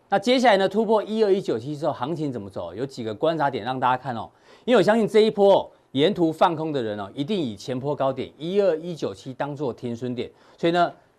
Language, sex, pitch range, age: Chinese, male, 130-185 Hz, 40-59